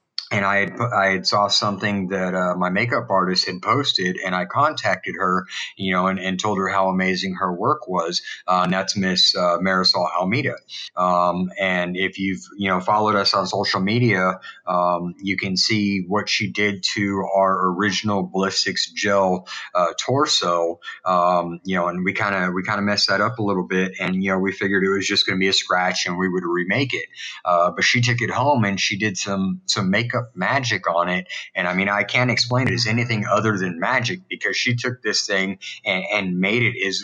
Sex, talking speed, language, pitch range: male, 215 wpm, English, 90-105 Hz